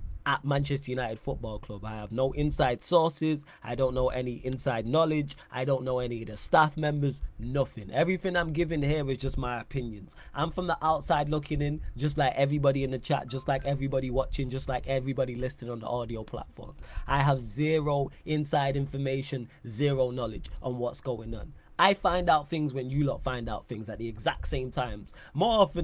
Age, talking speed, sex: 20-39, 195 wpm, male